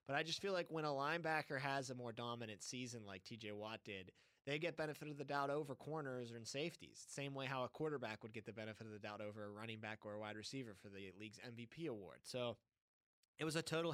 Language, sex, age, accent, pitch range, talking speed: English, male, 20-39, American, 105-135 Hz, 245 wpm